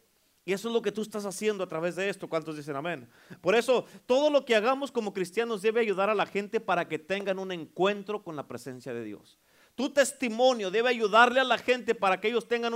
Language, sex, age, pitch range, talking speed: Spanish, male, 40-59, 185-250 Hz, 230 wpm